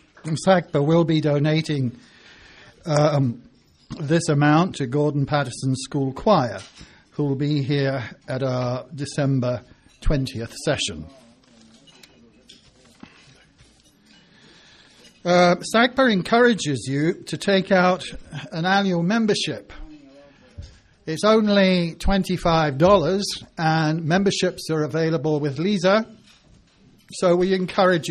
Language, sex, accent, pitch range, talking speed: English, male, British, 150-185 Hz, 90 wpm